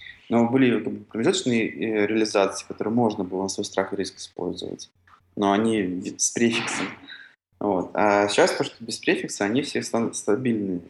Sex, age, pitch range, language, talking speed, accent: male, 20-39, 95-110 Hz, Russian, 160 wpm, native